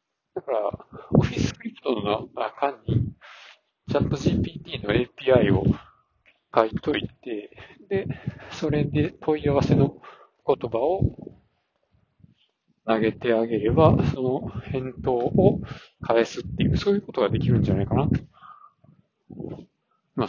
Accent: native